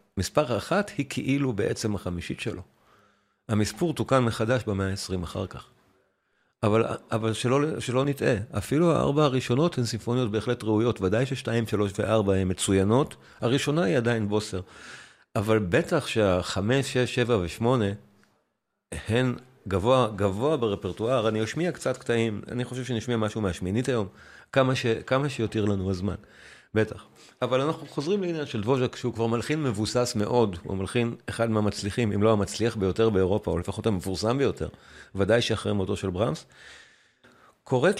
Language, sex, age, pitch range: Hebrew, male, 50-69, 105-125 Hz